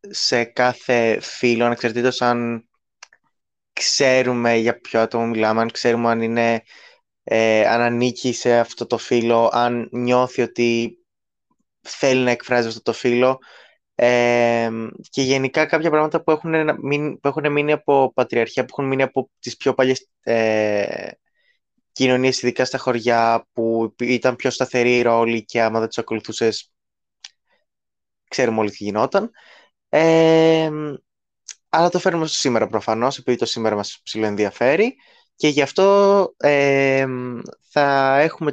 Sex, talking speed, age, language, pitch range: male, 130 wpm, 20-39, Greek, 115-145 Hz